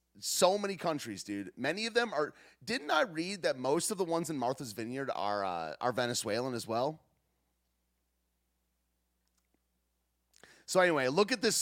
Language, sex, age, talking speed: English, male, 30-49, 155 wpm